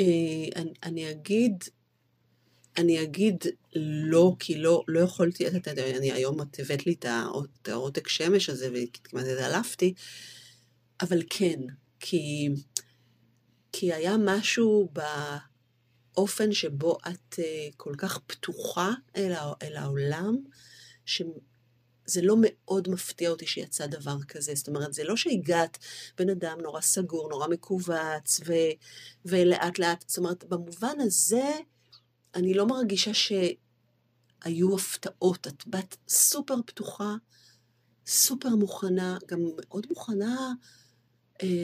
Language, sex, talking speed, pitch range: Hebrew, female, 110 wpm, 140-200 Hz